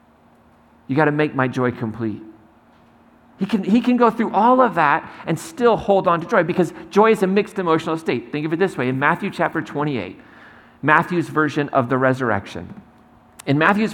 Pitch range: 125-195 Hz